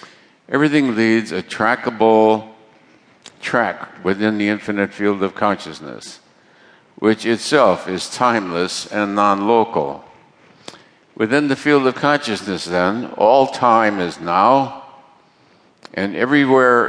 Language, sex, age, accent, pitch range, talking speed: English, male, 60-79, American, 105-125 Hz, 105 wpm